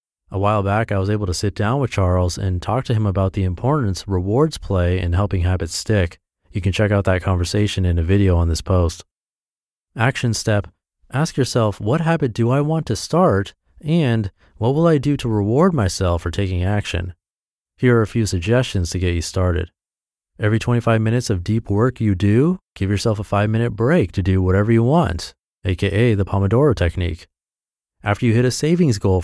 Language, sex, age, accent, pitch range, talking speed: English, male, 30-49, American, 95-125 Hz, 195 wpm